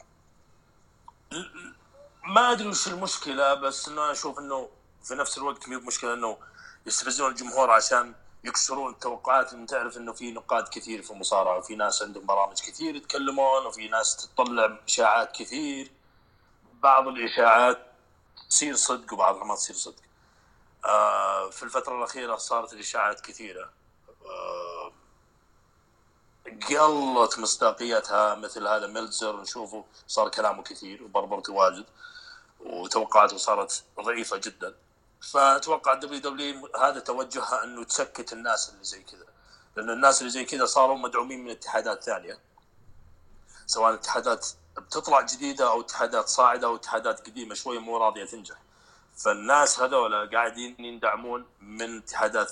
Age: 30-49